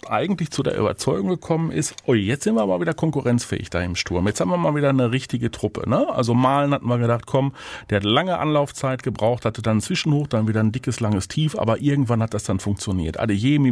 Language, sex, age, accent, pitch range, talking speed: German, male, 40-59, German, 110-145 Hz, 225 wpm